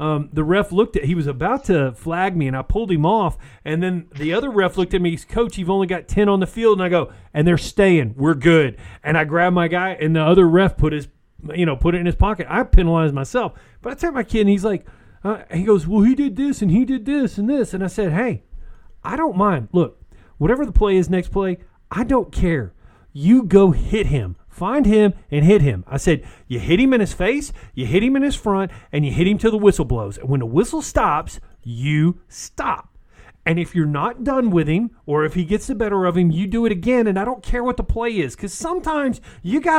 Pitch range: 160-225 Hz